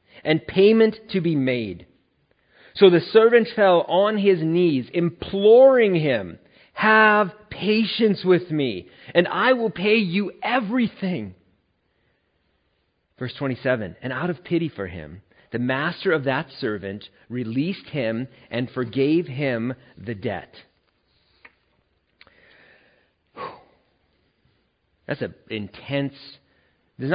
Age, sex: 40-59, male